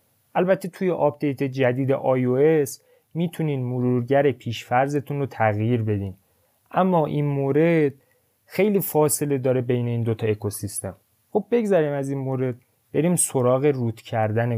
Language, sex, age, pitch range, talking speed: Persian, male, 20-39, 115-145 Hz, 130 wpm